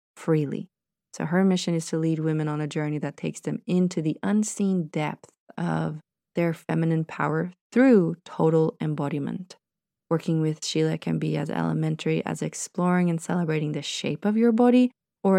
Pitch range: 150-190 Hz